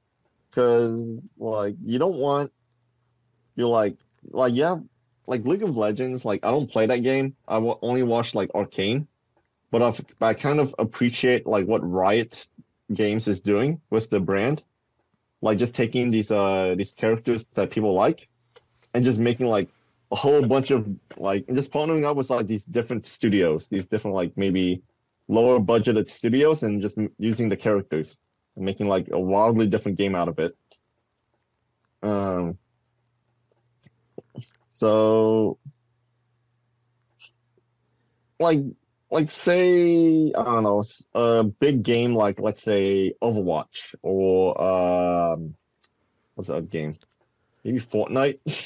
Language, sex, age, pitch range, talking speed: English, male, 30-49, 105-125 Hz, 140 wpm